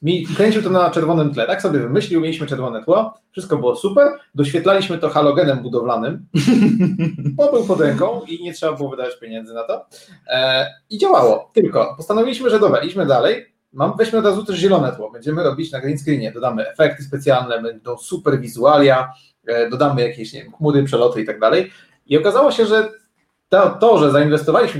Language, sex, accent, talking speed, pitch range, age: Polish, male, native, 170 wpm, 130-170 Hz, 30-49